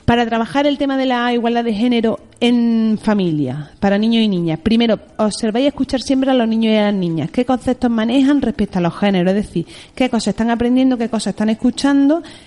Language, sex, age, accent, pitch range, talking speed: Spanish, female, 30-49, Spanish, 200-245 Hz, 205 wpm